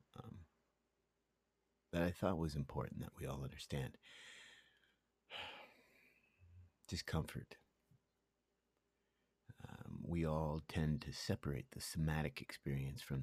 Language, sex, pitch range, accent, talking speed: English, male, 75-95 Hz, American, 95 wpm